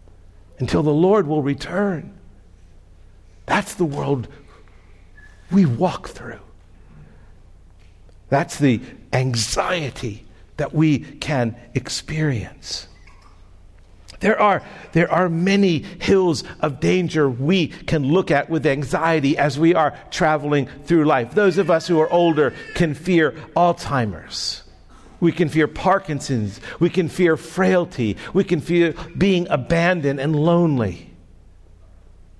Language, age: English, 60-79